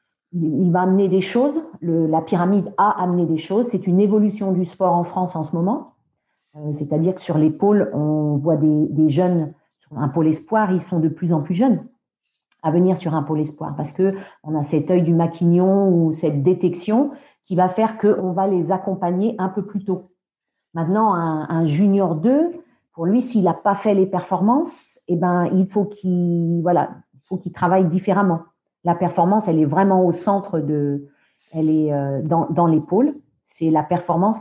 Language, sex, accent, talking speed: French, female, French, 190 wpm